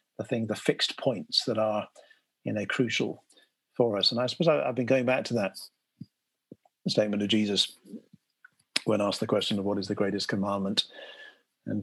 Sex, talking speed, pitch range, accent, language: male, 170 wpm, 100-120 Hz, British, English